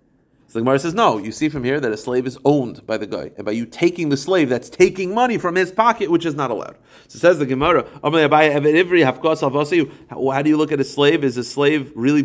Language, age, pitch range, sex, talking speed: English, 30-49, 125-160 Hz, male, 235 wpm